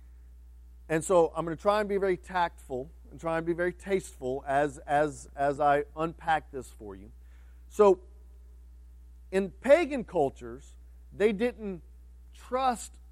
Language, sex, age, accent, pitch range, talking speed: English, male, 40-59, American, 140-200 Hz, 140 wpm